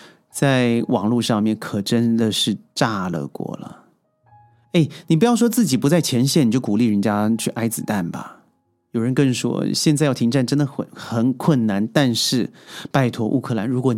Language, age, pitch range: Chinese, 30-49, 115-165 Hz